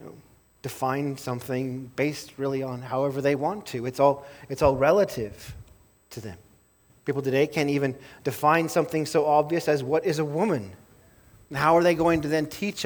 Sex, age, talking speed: male, 30-49, 175 wpm